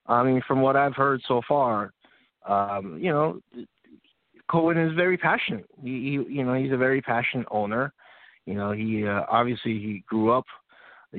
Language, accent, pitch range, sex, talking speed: English, American, 105-130 Hz, male, 175 wpm